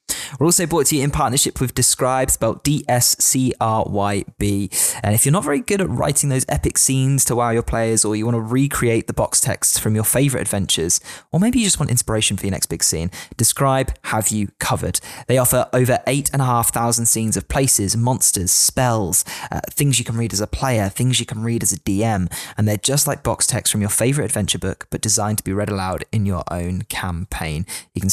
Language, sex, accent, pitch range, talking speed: English, male, British, 100-135 Hz, 215 wpm